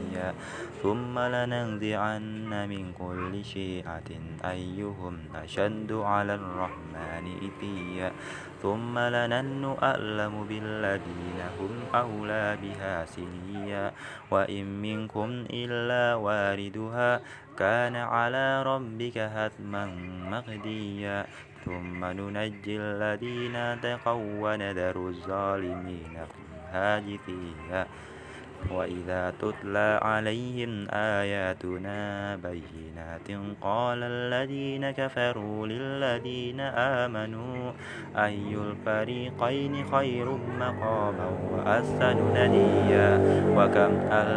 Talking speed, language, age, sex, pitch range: 60 wpm, Indonesian, 20-39, male, 95-120 Hz